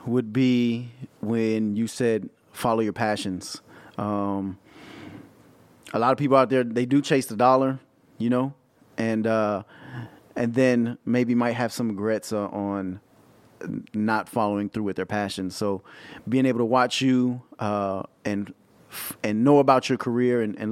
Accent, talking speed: American, 160 wpm